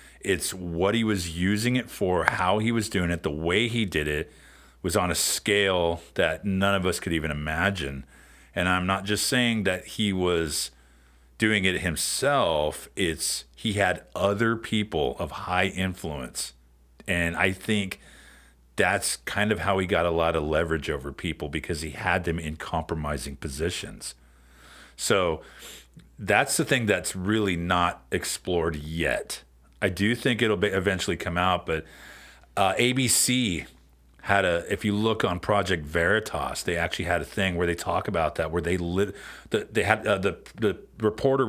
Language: English